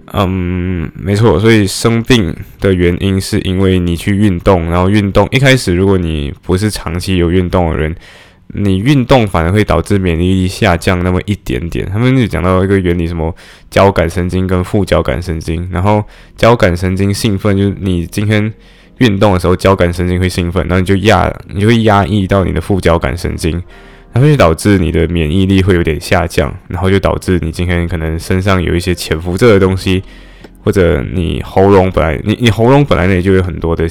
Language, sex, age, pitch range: Chinese, male, 10-29, 85-100 Hz